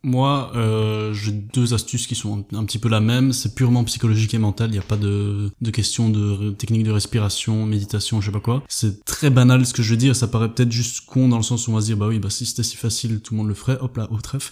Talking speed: 300 wpm